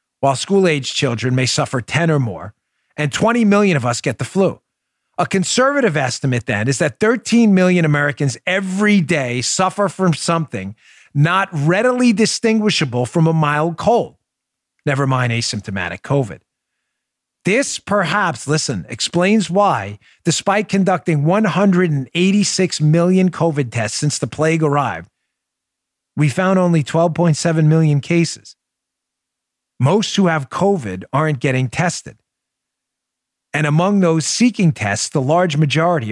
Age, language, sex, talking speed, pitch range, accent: 40-59, English, male, 130 wpm, 125-180 Hz, American